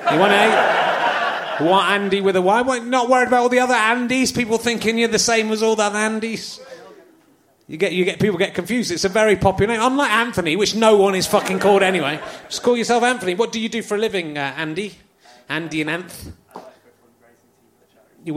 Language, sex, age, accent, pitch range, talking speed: English, male, 30-49, British, 160-215 Hz, 205 wpm